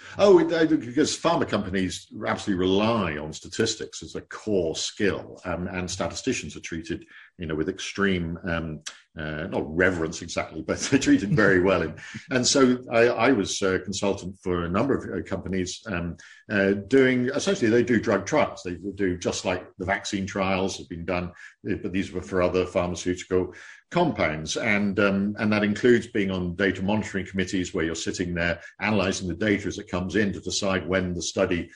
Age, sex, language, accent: 50-69, male, English, British